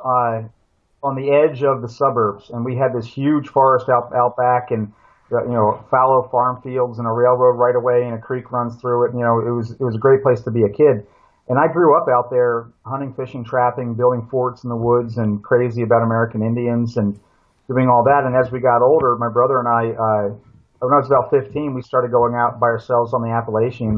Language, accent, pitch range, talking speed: English, American, 115-130 Hz, 235 wpm